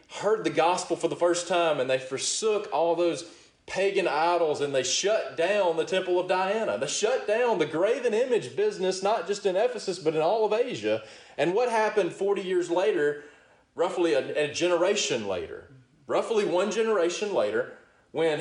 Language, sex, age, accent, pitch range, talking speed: English, male, 30-49, American, 150-225 Hz, 175 wpm